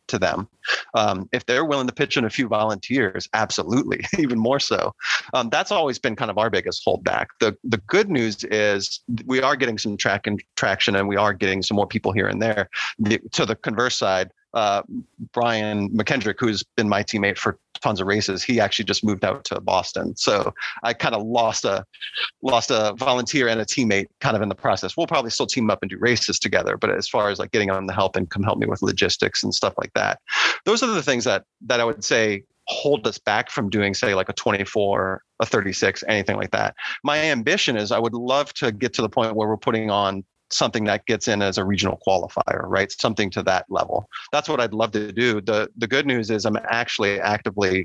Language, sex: English, male